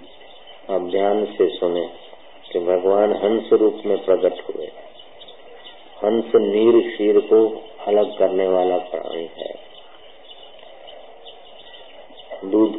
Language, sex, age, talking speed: Hindi, male, 50-69, 95 wpm